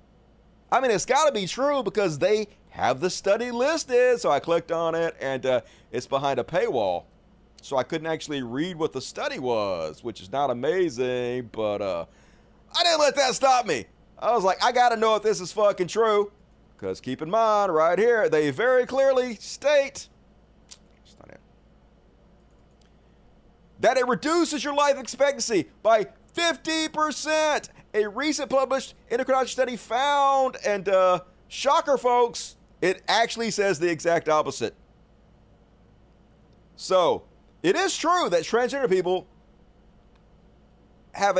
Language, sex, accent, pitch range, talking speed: English, male, American, 170-270 Hz, 145 wpm